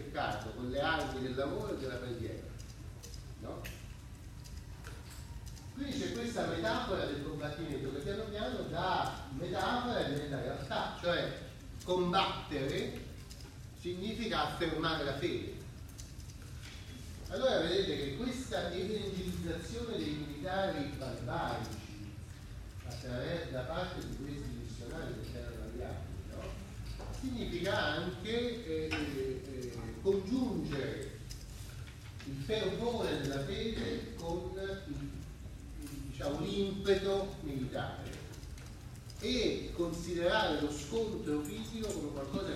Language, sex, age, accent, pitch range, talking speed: Italian, male, 40-59, native, 115-160 Hz, 85 wpm